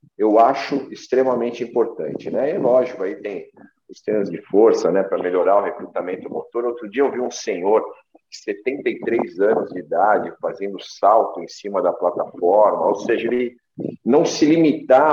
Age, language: 50-69, Portuguese